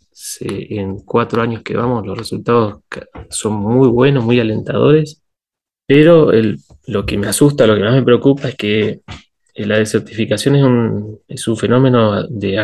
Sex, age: male, 20-39